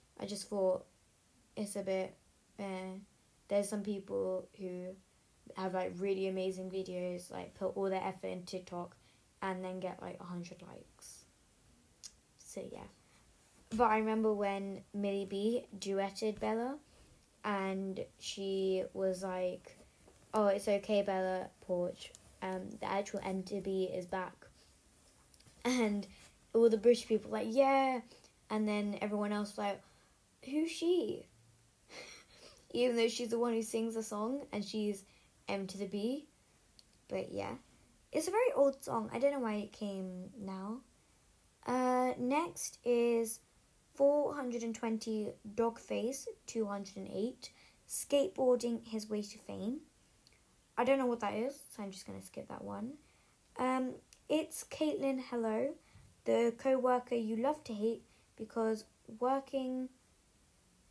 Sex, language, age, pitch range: female, English, 20-39, 190-245 Hz